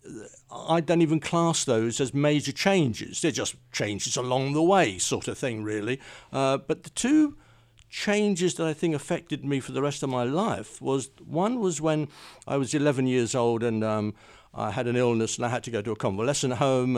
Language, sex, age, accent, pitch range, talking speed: English, male, 50-69, British, 110-140 Hz, 205 wpm